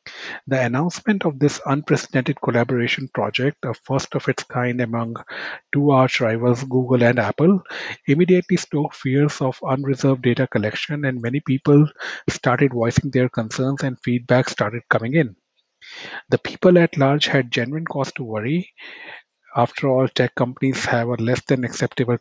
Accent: Indian